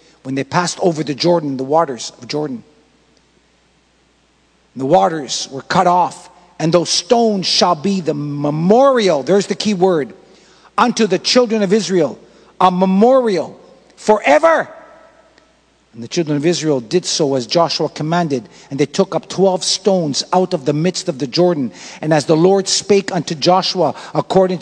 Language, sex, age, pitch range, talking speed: English, male, 50-69, 170-205 Hz, 160 wpm